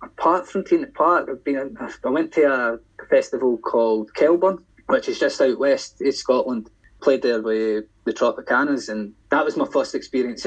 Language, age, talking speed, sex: English, 20-39, 180 wpm, male